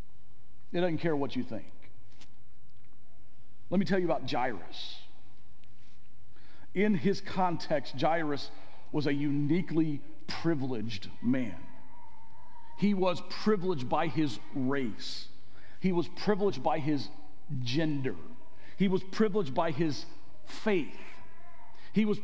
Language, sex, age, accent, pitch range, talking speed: English, male, 40-59, American, 120-180 Hz, 110 wpm